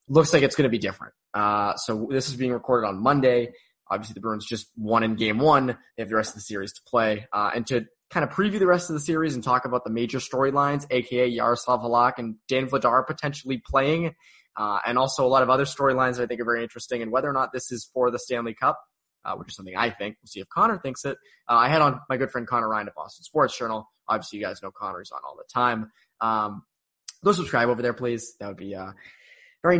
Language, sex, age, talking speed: English, male, 20-39, 255 wpm